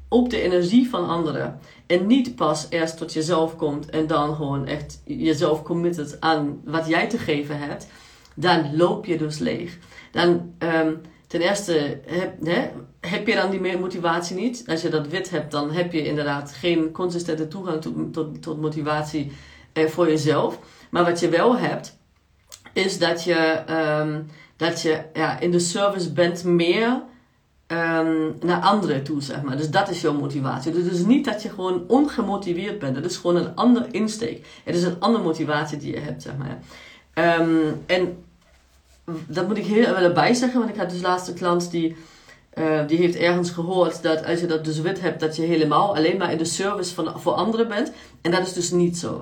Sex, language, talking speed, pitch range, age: female, Dutch, 190 wpm, 155-180 Hz, 40-59